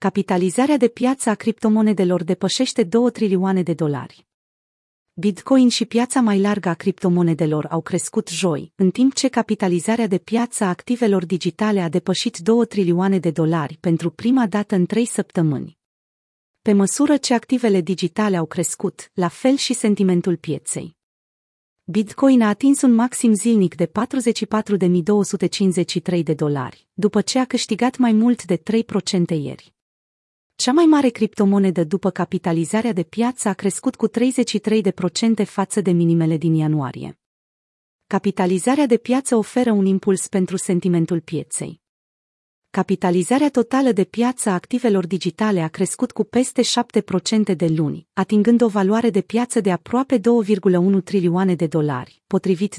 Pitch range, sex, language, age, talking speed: 175-230 Hz, female, Romanian, 30-49, 140 wpm